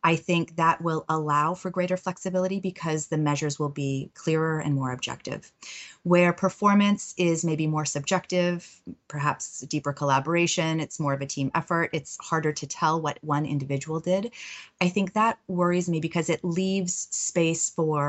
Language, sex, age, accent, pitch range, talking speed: English, female, 30-49, American, 145-175 Hz, 170 wpm